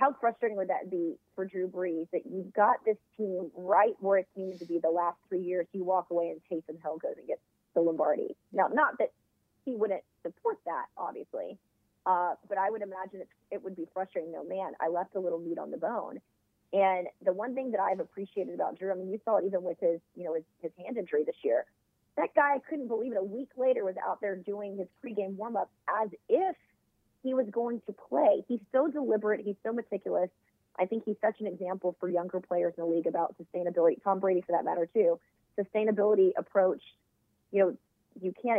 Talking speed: 215 wpm